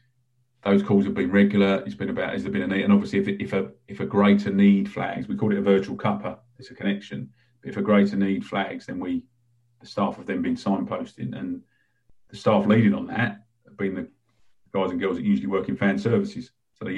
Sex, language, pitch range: male, English, 95-110 Hz